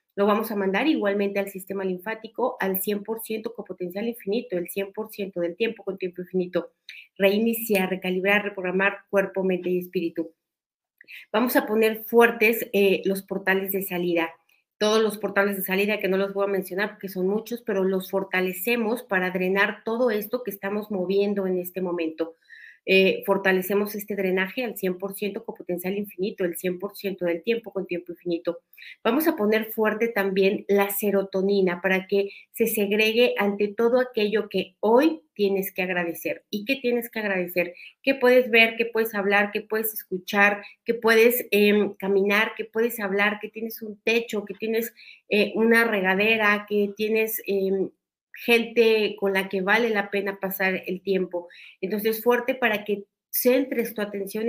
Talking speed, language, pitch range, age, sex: 165 wpm, Spanish, 190-225 Hz, 40-59, female